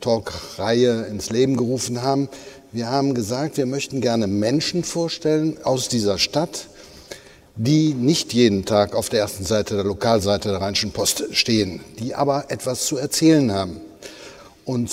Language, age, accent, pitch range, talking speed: German, 60-79, German, 110-145 Hz, 150 wpm